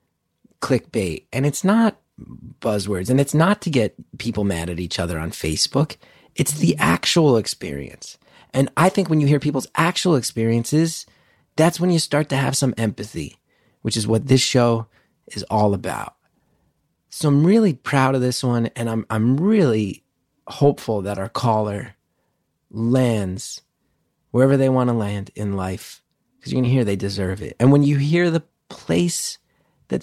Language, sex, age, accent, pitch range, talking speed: English, male, 30-49, American, 110-155 Hz, 170 wpm